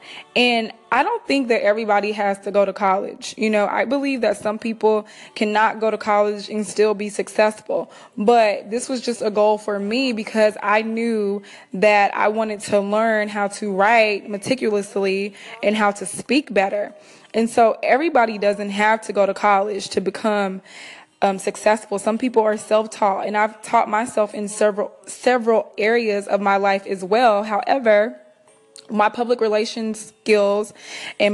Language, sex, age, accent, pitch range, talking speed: English, female, 20-39, American, 205-230 Hz, 165 wpm